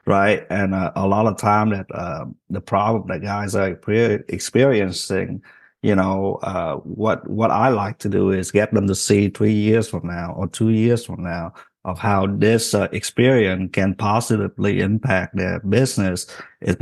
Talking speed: 175 wpm